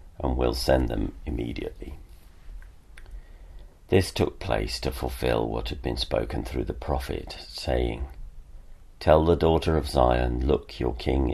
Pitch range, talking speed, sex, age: 65-80 Hz, 140 wpm, male, 40-59